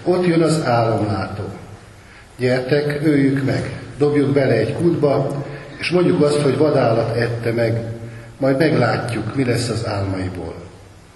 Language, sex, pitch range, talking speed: Hungarian, male, 110-140 Hz, 130 wpm